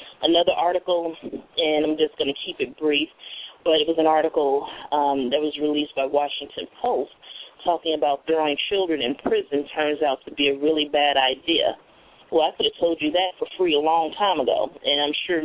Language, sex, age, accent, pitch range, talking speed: English, female, 30-49, American, 145-175 Hz, 200 wpm